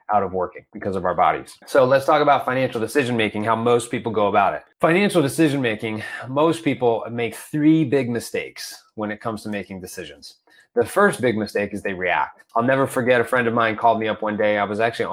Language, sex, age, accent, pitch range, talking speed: English, male, 20-39, American, 105-135 Hz, 220 wpm